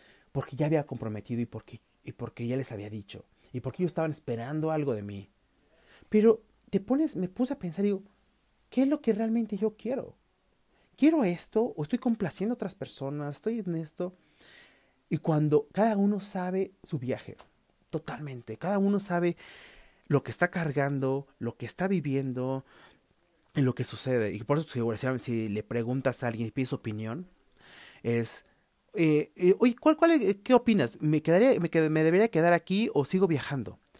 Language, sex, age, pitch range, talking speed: Spanish, male, 30-49, 130-195 Hz, 175 wpm